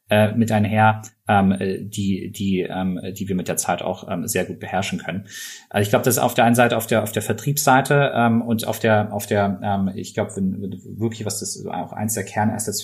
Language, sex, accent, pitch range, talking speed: German, male, German, 95-110 Hz, 195 wpm